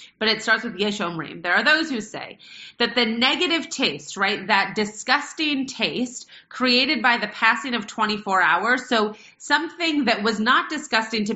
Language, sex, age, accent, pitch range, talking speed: English, female, 30-49, American, 190-250 Hz, 175 wpm